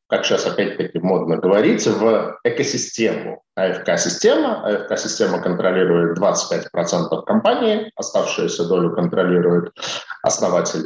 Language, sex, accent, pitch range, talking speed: Russian, male, native, 90-150 Hz, 95 wpm